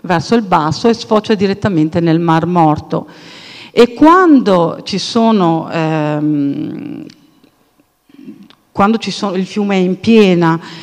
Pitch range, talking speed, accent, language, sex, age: 170-240 Hz, 120 wpm, native, Italian, female, 50-69